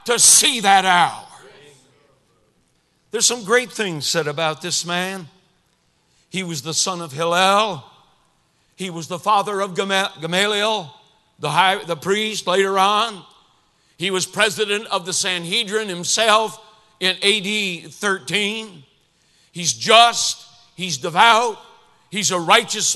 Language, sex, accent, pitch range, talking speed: English, male, American, 175-240 Hz, 125 wpm